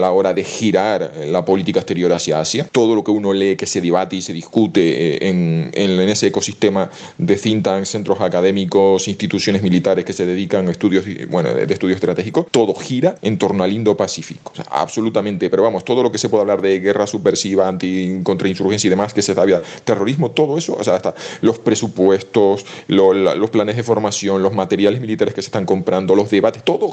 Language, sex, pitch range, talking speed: Spanish, male, 95-110 Hz, 205 wpm